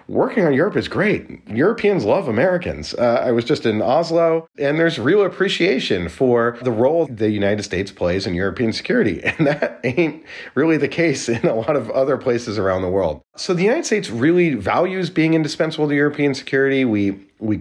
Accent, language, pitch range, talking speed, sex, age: American, English, 110-145 Hz, 190 wpm, male, 30-49